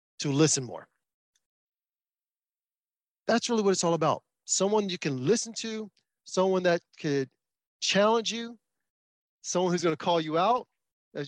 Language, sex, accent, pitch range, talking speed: English, male, American, 150-190 Hz, 145 wpm